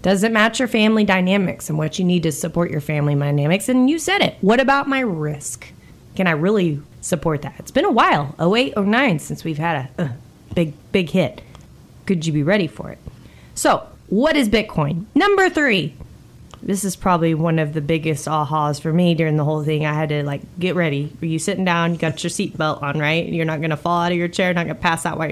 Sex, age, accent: female, 20-39, American